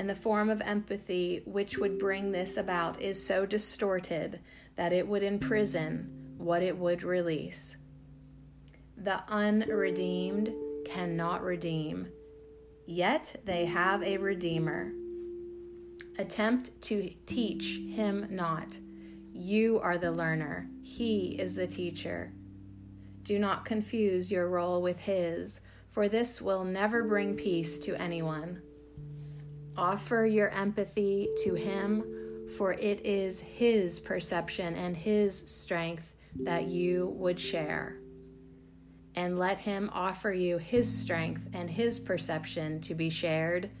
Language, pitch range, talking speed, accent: English, 145-200 Hz, 120 wpm, American